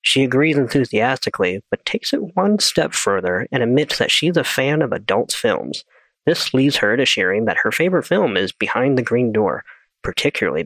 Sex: male